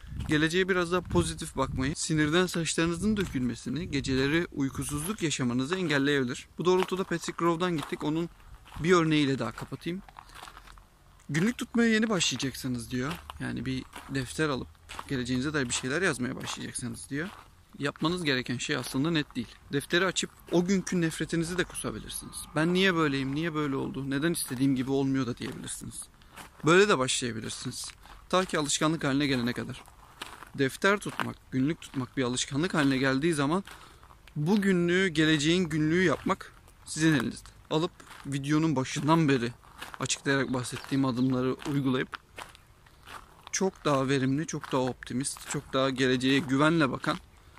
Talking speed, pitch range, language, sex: 135 wpm, 130-165 Hz, Turkish, male